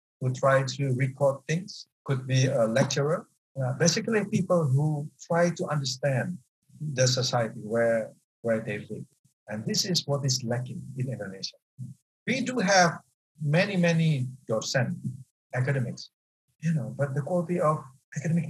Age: 60-79